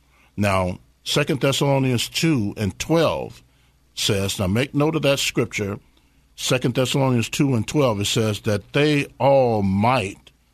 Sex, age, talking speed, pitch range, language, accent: male, 50-69, 135 wpm, 110-150 Hz, English, American